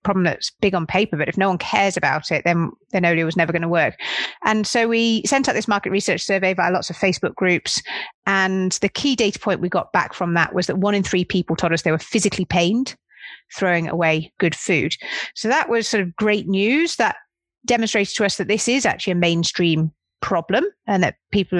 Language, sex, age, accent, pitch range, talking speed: English, female, 30-49, British, 175-220 Hz, 225 wpm